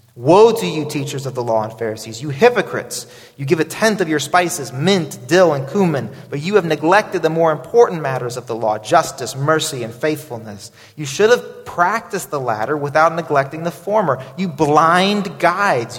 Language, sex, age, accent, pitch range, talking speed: English, male, 30-49, American, 130-180 Hz, 190 wpm